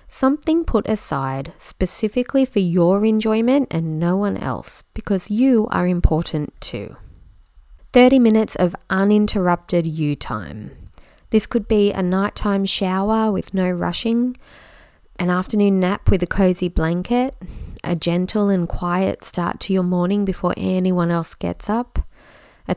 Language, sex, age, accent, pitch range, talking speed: English, female, 20-39, Australian, 175-220 Hz, 135 wpm